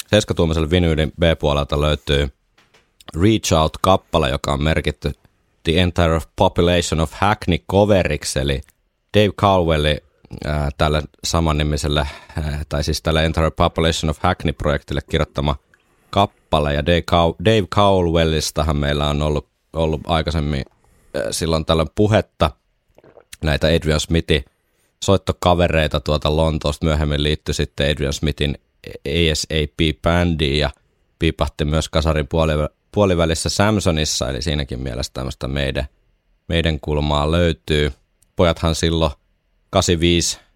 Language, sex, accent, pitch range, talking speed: Finnish, male, native, 75-85 Hz, 110 wpm